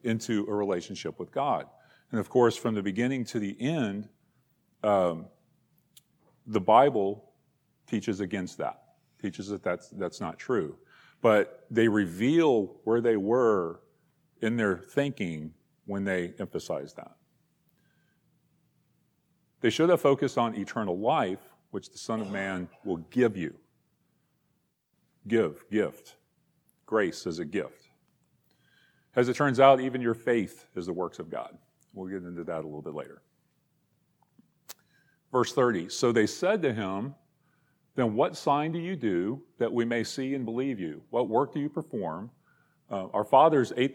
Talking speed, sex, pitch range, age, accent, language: 150 wpm, male, 105-155 Hz, 40-59, American, English